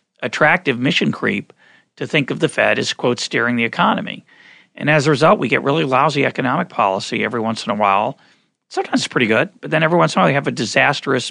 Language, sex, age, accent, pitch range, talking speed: English, male, 40-59, American, 115-165 Hz, 230 wpm